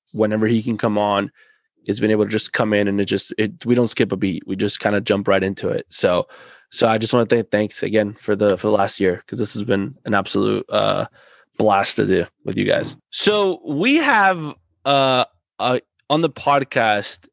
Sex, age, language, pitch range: male, 20-39, English, 110-130 Hz